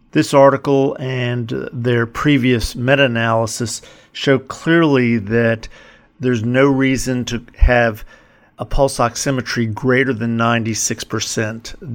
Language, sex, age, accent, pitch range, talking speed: English, male, 50-69, American, 115-130 Hz, 100 wpm